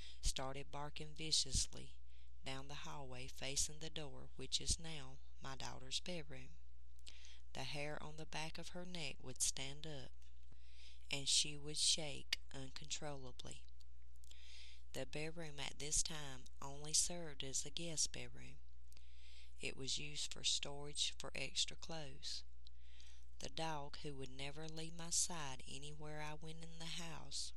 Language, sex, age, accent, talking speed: English, female, 40-59, American, 140 wpm